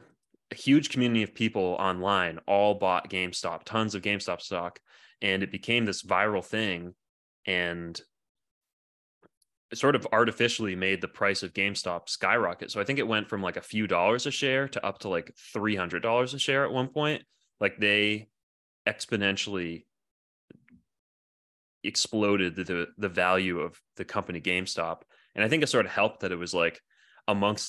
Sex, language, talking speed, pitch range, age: male, English, 165 wpm, 85-105 Hz, 20-39